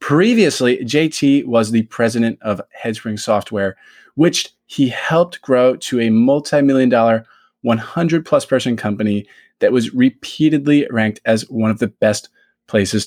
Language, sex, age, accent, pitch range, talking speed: English, male, 20-39, American, 110-150 Hz, 130 wpm